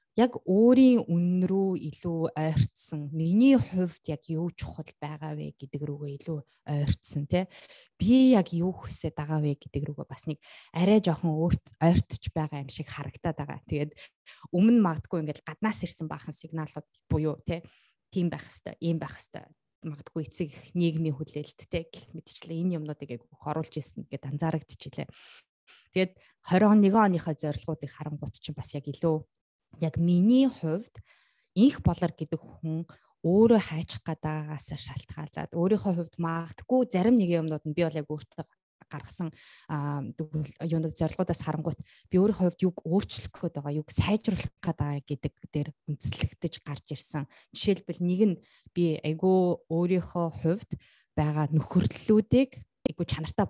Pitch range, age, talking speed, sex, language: 150-180 Hz, 20-39, 110 wpm, female, English